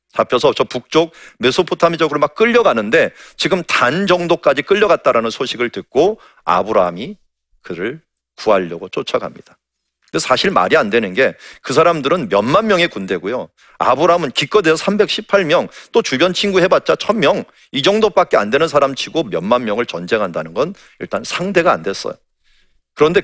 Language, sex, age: Korean, male, 40-59